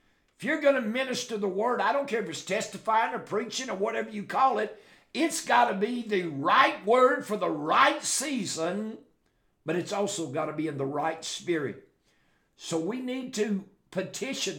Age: 60-79